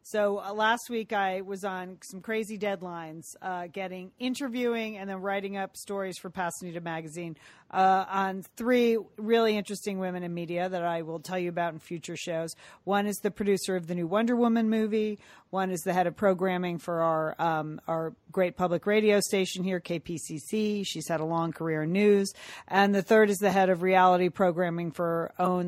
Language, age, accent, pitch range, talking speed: English, 40-59, American, 175-210 Hz, 195 wpm